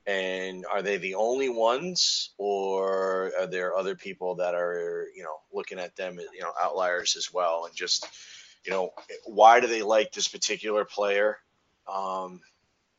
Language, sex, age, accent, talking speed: English, male, 30-49, American, 165 wpm